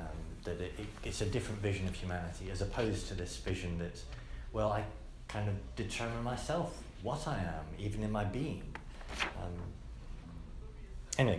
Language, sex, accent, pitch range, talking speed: English, male, British, 85-125 Hz, 150 wpm